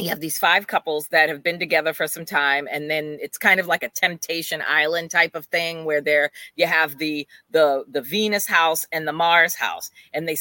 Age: 30-49